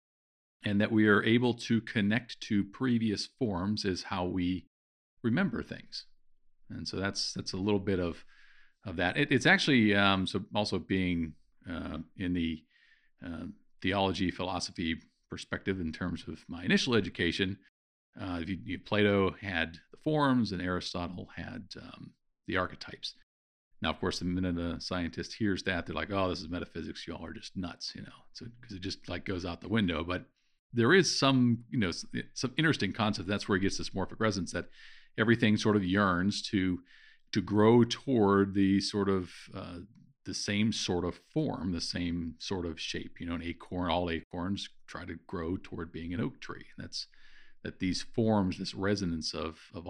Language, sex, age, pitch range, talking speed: English, male, 50-69, 90-115 Hz, 180 wpm